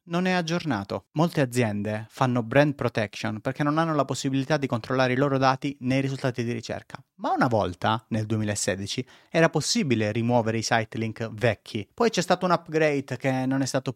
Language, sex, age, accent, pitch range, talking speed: Italian, male, 30-49, native, 125-165 Hz, 180 wpm